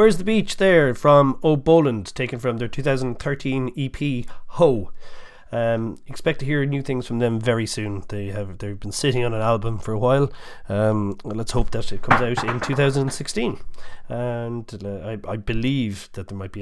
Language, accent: English, Irish